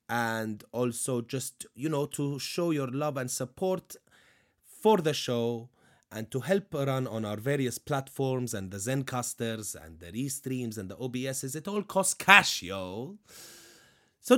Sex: male